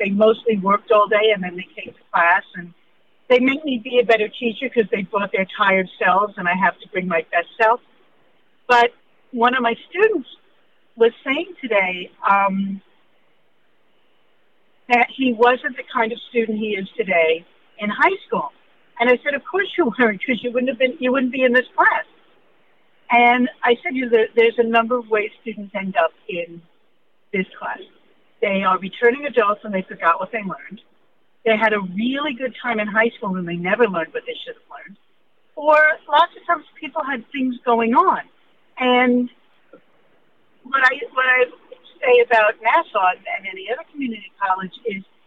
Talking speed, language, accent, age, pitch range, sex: 180 wpm, English, American, 60-79, 205-265 Hz, female